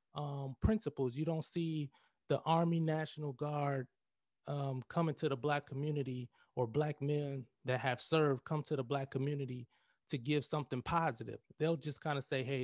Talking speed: 170 wpm